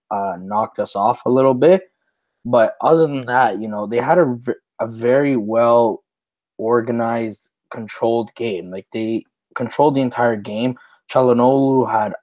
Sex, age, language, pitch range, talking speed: male, 20-39, English, 110-125 Hz, 140 wpm